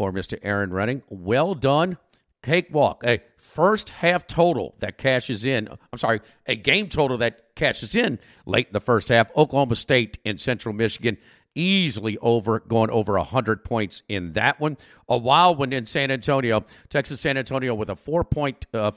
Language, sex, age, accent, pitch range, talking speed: English, male, 50-69, American, 110-145 Hz, 170 wpm